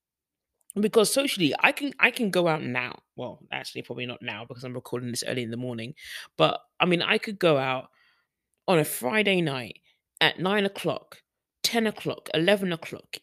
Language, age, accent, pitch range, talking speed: English, 20-39, British, 145-205 Hz, 180 wpm